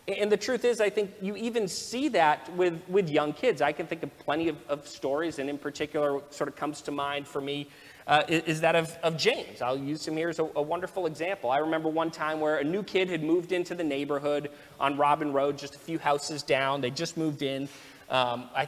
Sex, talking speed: male, 245 wpm